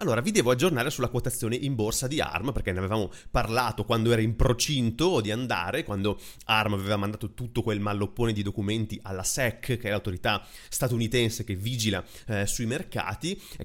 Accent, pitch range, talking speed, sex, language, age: native, 105-125 Hz, 180 wpm, male, Italian, 30-49